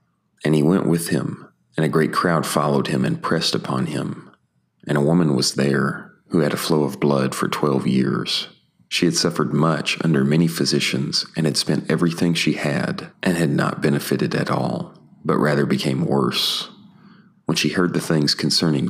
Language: English